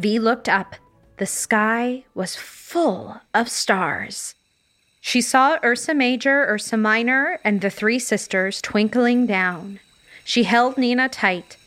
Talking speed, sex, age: 130 wpm, female, 30-49